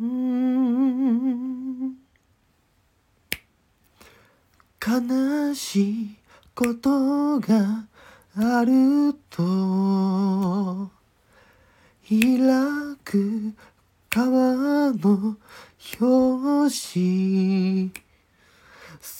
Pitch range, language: 195-285 Hz, Japanese